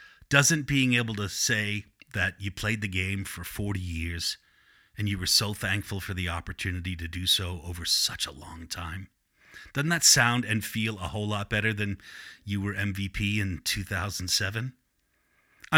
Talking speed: 165 wpm